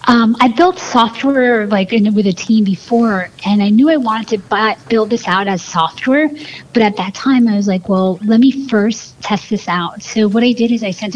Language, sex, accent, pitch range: English, female, American, 190-230 Hz